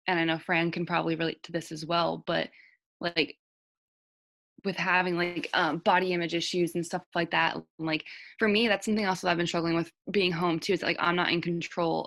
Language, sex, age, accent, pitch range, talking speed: English, female, 20-39, American, 160-175 Hz, 220 wpm